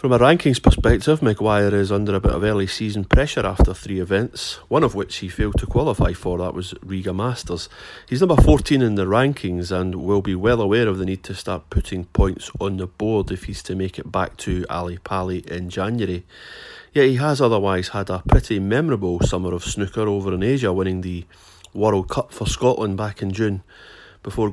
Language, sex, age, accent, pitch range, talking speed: English, male, 30-49, British, 95-115 Hz, 205 wpm